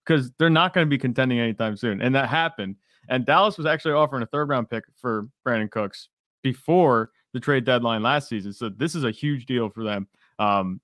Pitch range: 115-140 Hz